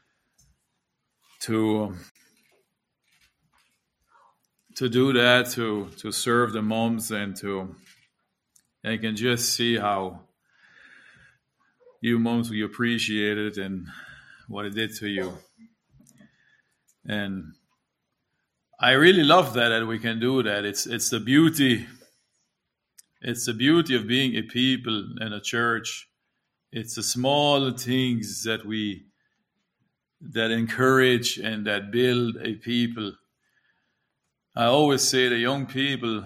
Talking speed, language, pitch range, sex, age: 120 wpm, English, 105-125 Hz, male, 40-59